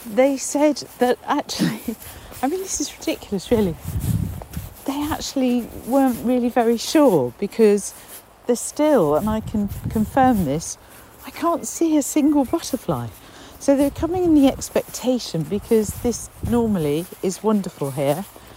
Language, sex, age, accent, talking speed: English, female, 40-59, British, 135 wpm